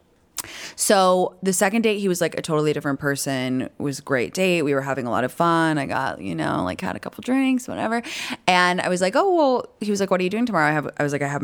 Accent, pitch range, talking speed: American, 150-190 Hz, 275 wpm